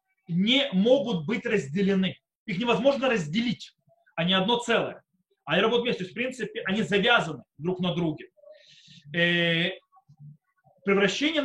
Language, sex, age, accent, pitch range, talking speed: Russian, male, 30-49, native, 170-250 Hz, 120 wpm